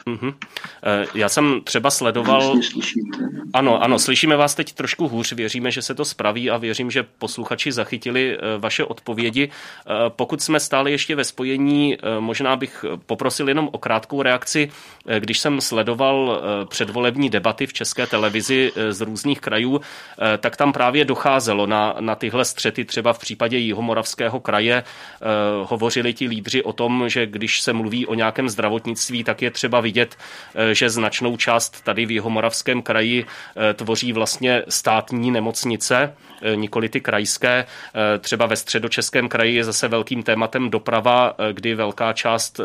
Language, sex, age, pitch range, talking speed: Czech, male, 30-49, 110-130 Hz, 145 wpm